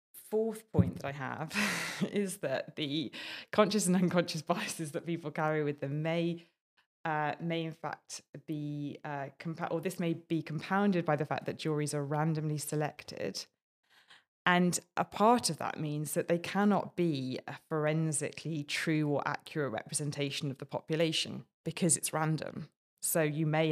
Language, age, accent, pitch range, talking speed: English, 20-39, British, 140-165 Hz, 160 wpm